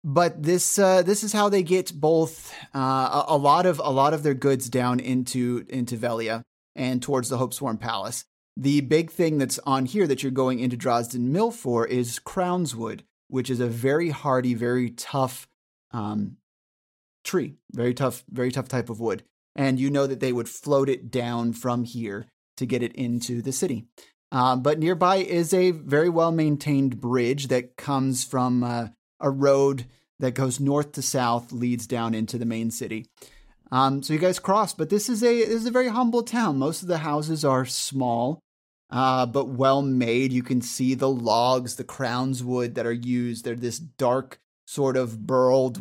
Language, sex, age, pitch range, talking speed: English, male, 30-49, 125-145 Hz, 190 wpm